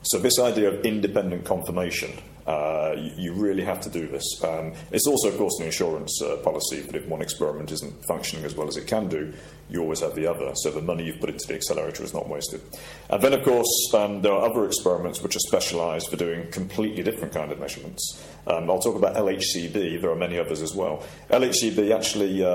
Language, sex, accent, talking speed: English, male, British, 220 wpm